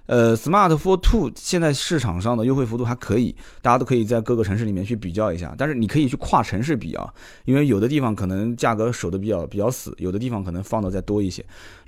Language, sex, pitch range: Chinese, male, 110-160 Hz